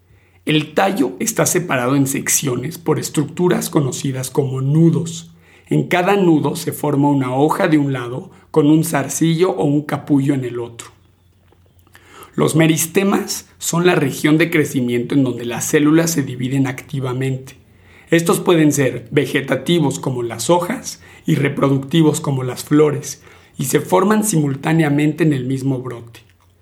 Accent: Mexican